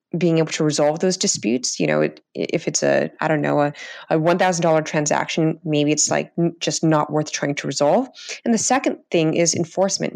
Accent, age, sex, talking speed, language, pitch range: American, 20-39, female, 200 wpm, English, 155-200 Hz